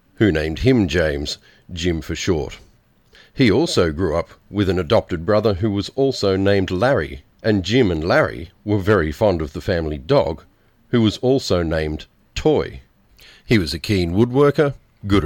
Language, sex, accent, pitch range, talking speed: English, male, Australian, 85-110 Hz, 165 wpm